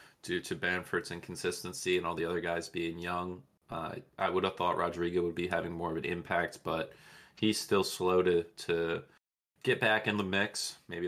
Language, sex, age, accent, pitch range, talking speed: English, male, 20-39, American, 85-95 Hz, 195 wpm